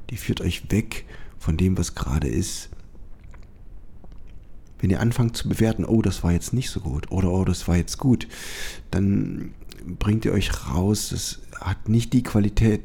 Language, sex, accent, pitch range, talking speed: German, male, German, 90-110 Hz, 175 wpm